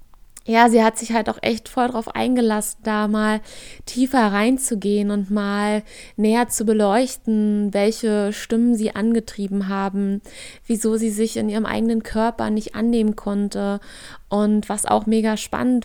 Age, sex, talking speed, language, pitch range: 20-39, female, 150 wpm, German, 210-235 Hz